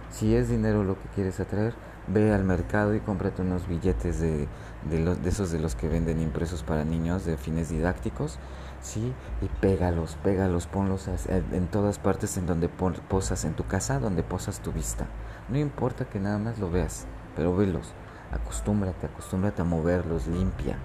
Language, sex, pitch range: Spanish, male, 80-100 Hz